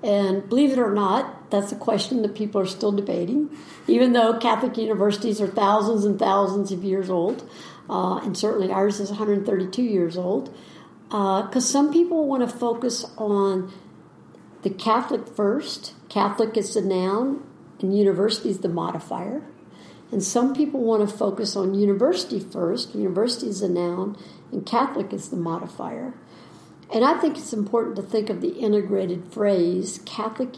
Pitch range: 195-235 Hz